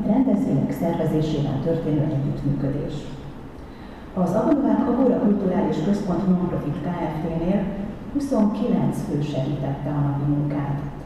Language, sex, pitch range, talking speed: Hungarian, female, 150-200 Hz, 90 wpm